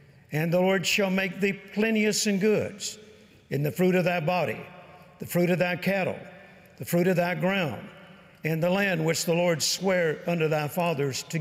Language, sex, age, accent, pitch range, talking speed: English, male, 60-79, American, 155-190 Hz, 190 wpm